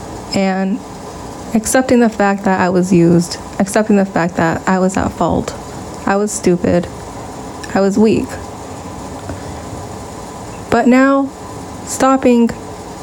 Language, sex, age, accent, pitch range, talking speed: English, female, 20-39, American, 195-230 Hz, 115 wpm